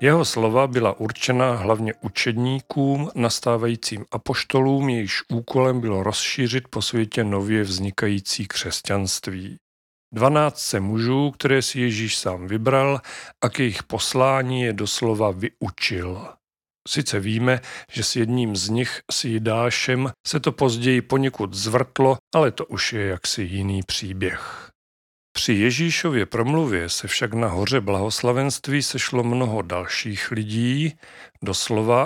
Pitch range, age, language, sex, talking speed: 105-125 Hz, 40-59, Czech, male, 120 wpm